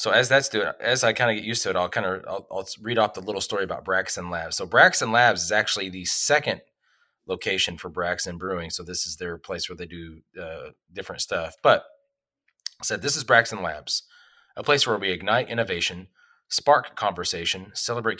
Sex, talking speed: male, 210 wpm